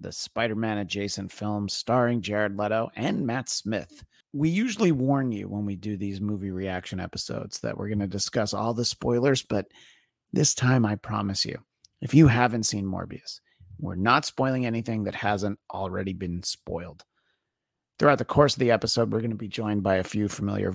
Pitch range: 110-150 Hz